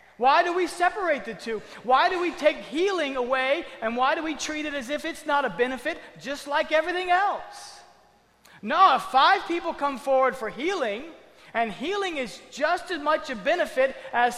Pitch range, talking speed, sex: 235-320 Hz, 190 wpm, male